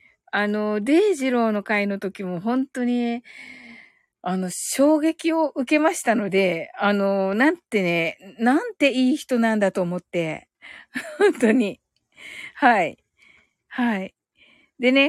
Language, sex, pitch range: Japanese, female, 210-320 Hz